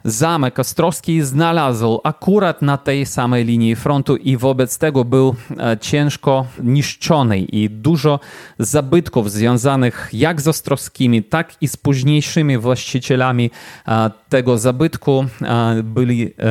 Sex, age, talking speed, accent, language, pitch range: male, 30-49, 110 wpm, native, Polish, 120-145 Hz